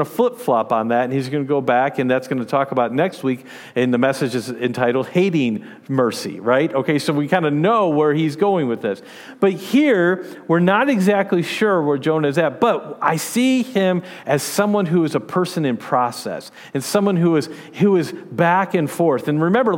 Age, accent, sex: 50-69, American, male